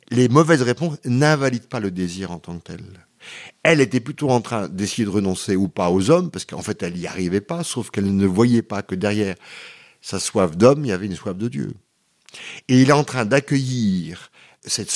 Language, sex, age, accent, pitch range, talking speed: French, male, 50-69, French, 100-150 Hz, 215 wpm